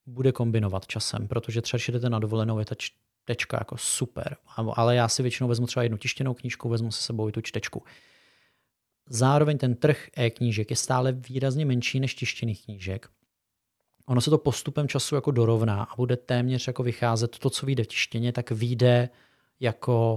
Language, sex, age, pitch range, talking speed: Czech, male, 30-49, 115-130 Hz, 175 wpm